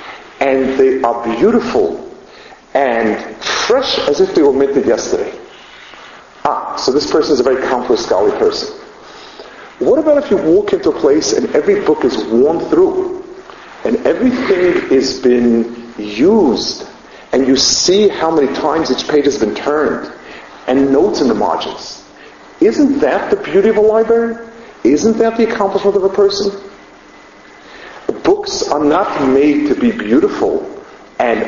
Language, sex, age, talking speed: English, male, 50-69, 150 wpm